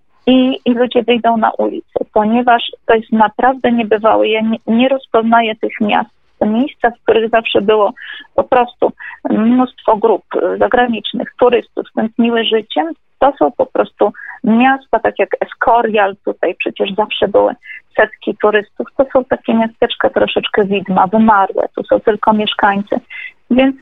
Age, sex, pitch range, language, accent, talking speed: 30-49, female, 215-270 Hz, Polish, native, 145 wpm